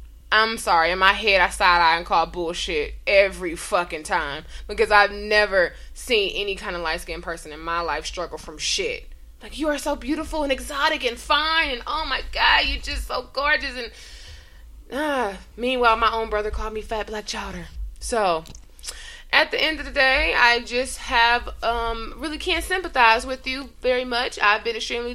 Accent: American